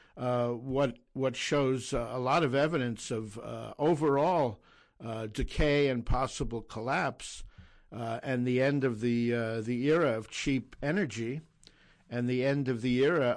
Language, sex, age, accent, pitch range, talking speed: English, male, 60-79, American, 115-140 Hz, 155 wpm